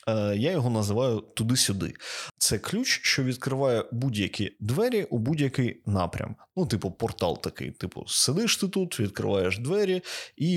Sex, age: male, 20-39